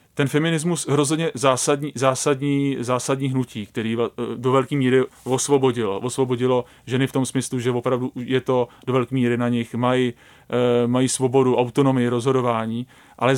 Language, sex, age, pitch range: Czech, male, 30-49, 125-155 Hz